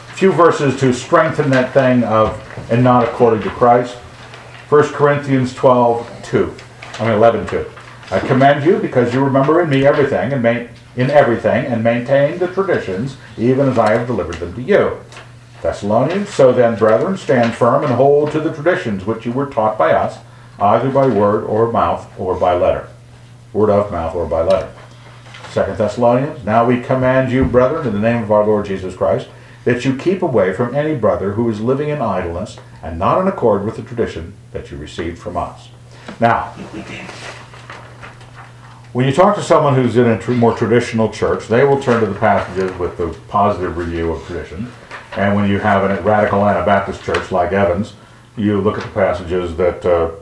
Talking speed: 185 wpm